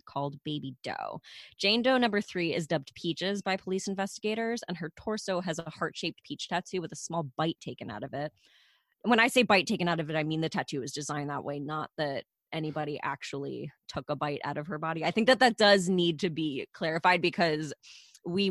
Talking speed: 215 wpm